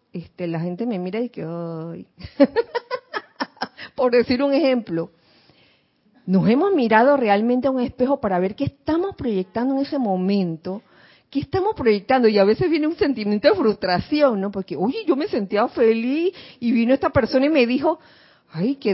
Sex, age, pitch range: female, 40-59, 210-285 Hz